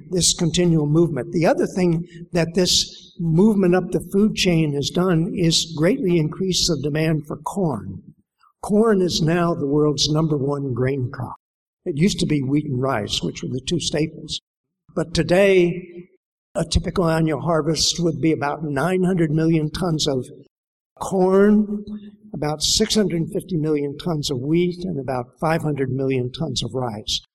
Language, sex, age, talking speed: English, male, 60-79, 155 wpm